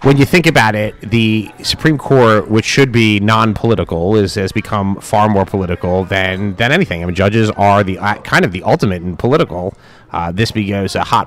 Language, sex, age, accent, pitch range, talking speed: English, male, 30-49, American, 95-115 Hz, 200 wpm